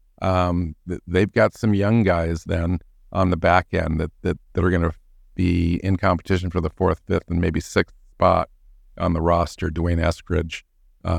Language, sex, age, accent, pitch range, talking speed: English, male, 50-69, American, 80-95 Hz, 180 wpm